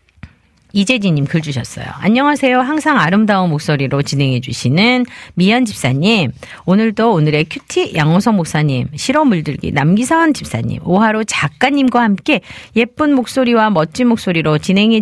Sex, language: female, Korean